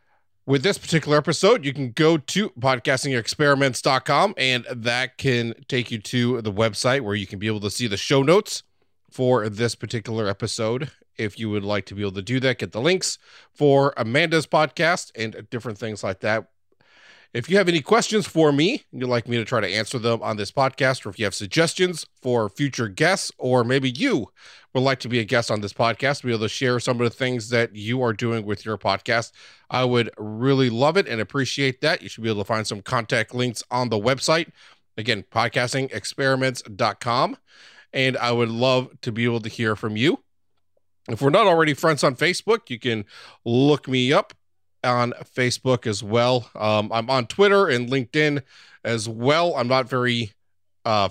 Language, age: English, 30-49